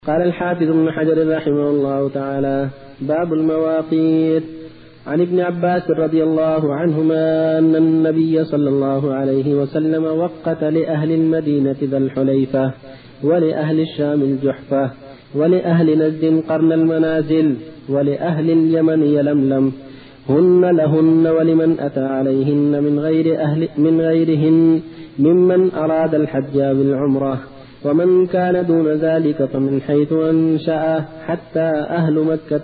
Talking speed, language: 110 wpm, Arabic